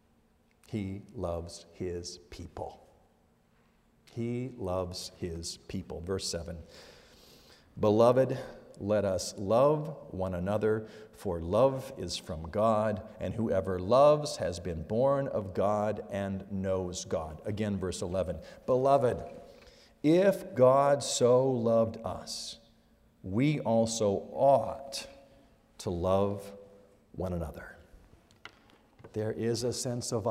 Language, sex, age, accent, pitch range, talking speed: English, male, 50-69, American, 100-140 Hz, 105 wpm